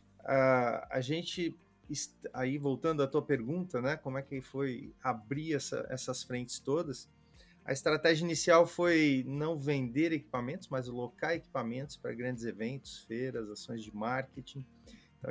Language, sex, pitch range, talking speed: Portuguese, male, 125-155 Hz, 145 wpm